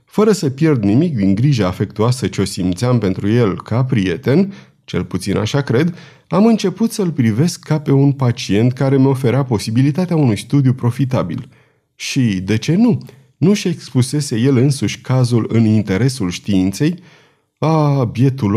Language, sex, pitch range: Romanian, male, 110-150 Hz